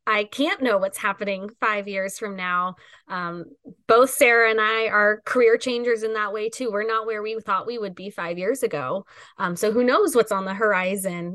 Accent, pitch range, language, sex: American, 175-220 Hz, English, female